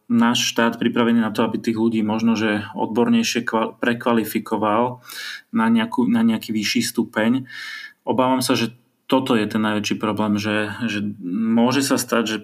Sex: male